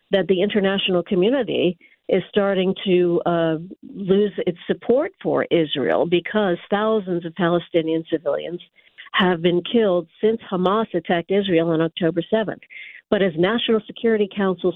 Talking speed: 135 wpm